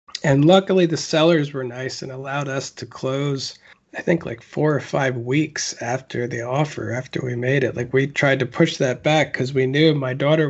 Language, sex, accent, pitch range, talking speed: English, male, American, 135-170 Hz, 210 wpm